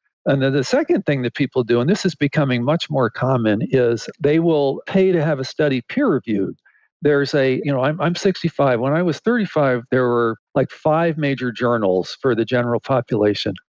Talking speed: 195 wpm